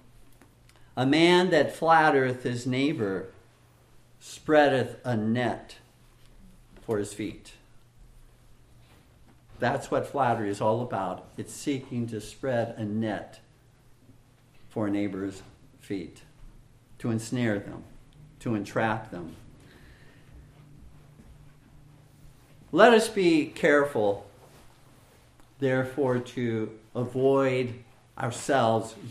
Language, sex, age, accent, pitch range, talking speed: English, male, 50-69, American, 115-145 Hz, 85 wpm